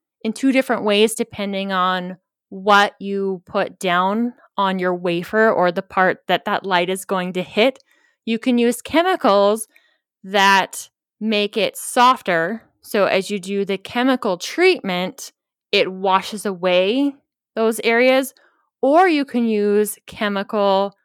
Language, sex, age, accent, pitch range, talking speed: English, female, 20-39, American, 190-245 Hz, 135 wpm